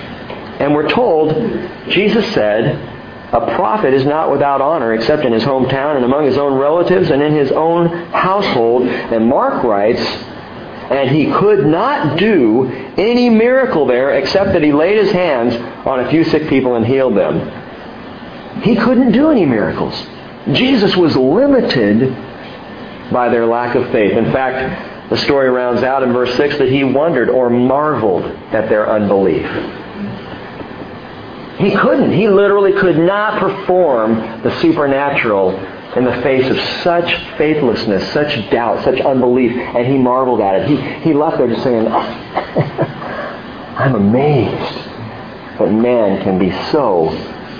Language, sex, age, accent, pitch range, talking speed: English, male, 50-69, American, 125-185 Hz, 150 wpm